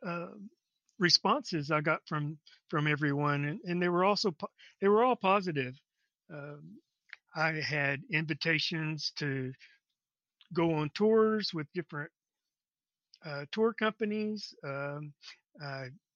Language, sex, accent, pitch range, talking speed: English, male, American, 150-180 Hz, 120 wpm